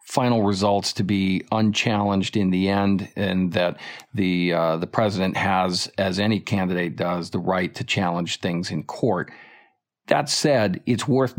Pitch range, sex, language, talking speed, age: 95-110 Hz, male, English, 160 wpm, 50-69